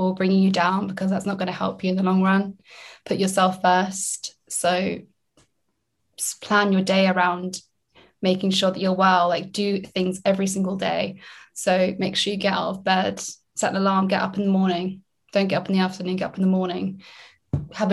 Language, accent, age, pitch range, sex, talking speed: English, British, 20-39, 185-205 Hz, female, 210 wpm